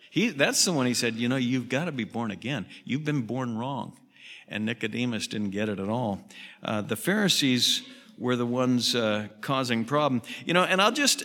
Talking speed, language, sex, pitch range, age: 210 wpm, English, male, 100-130 Hz, 50-69